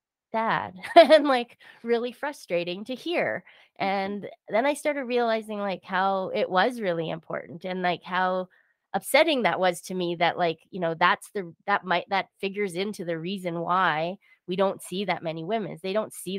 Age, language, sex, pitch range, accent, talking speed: 20-39, English, female, 170-195 Hz, American, 180 wpm